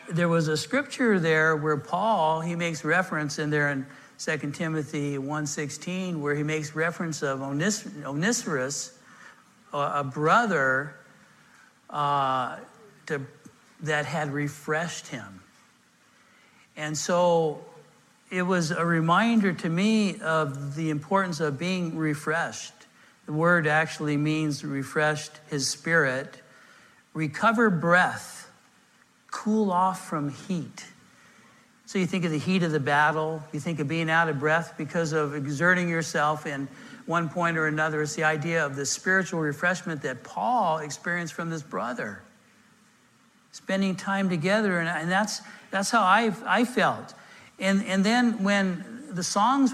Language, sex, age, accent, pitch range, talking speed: English, male, 60-79, American, 150-185 Hz, 140 wpm